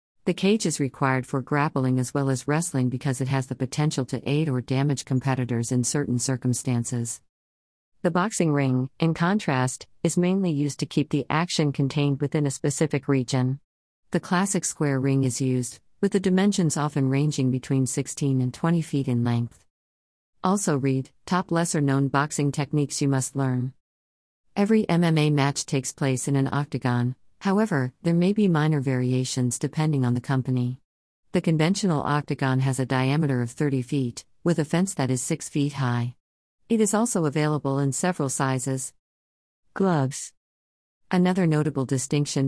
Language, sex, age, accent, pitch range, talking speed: English, female, 50-69, American, 125-155 Hz, 160 wpm